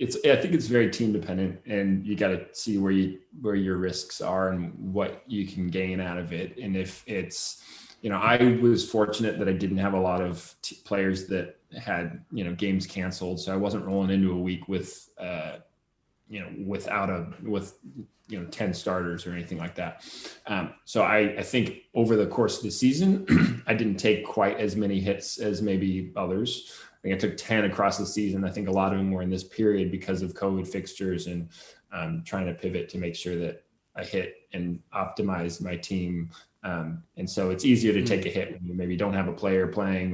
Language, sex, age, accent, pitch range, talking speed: English, male, 20-39, American, 90-100 Hz, 215 wpm